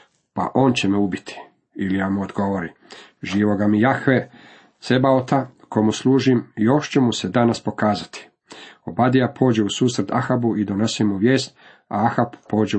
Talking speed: 155 wpm